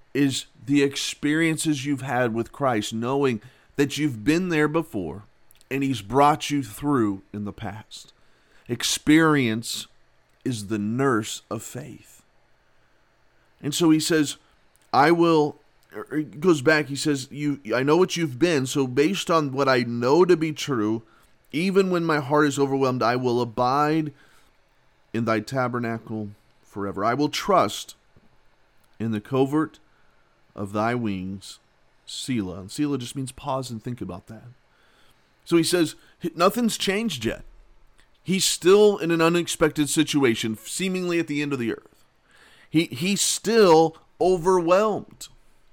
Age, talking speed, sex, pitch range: 40-59, 145 wpm, male, 120-160 Hz